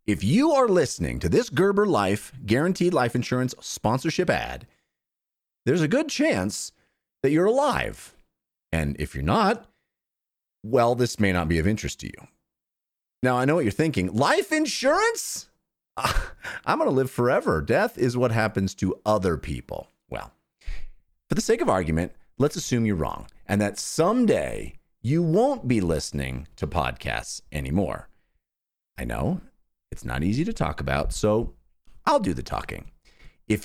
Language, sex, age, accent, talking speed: English, male, 30-49, American, 155 wpm